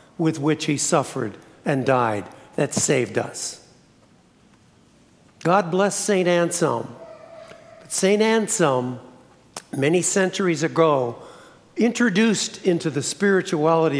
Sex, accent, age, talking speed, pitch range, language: male, American, 60-79, 95 wpm, 150-185 Hz, English